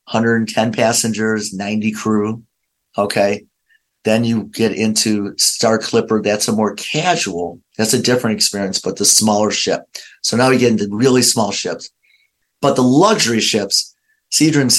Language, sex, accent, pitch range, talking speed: English, male, American, 100-115 Hz, 145 wpm